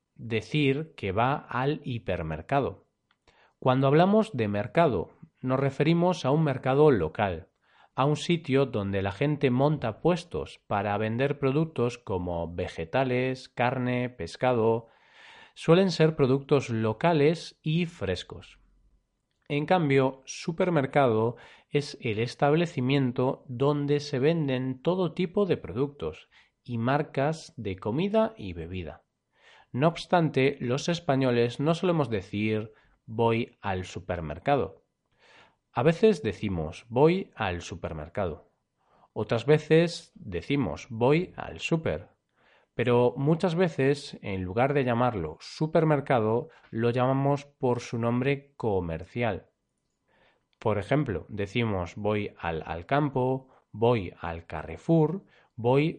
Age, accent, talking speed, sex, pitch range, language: 40-59, Spanish, 110 wpm, male, 110-150 Hz, Spanish